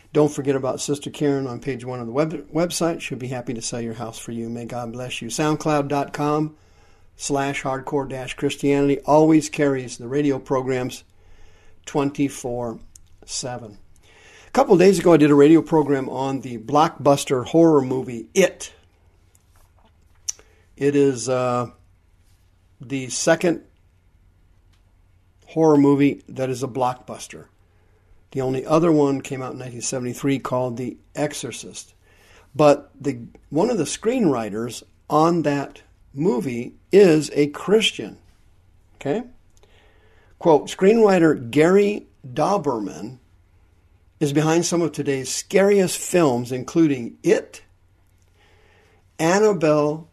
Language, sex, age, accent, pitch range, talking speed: English, male, 50-69, American, 95-150 Hz, 120 wpm